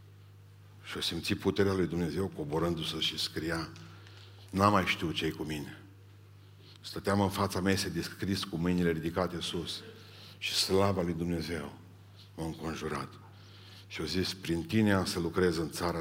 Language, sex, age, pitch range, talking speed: Romanian, male, 50-69, 85-100 Hz, 145 wpm